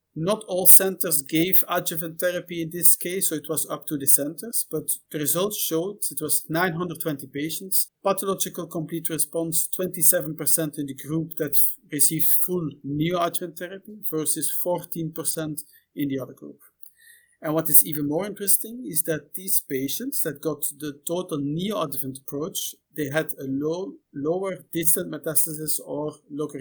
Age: 50-69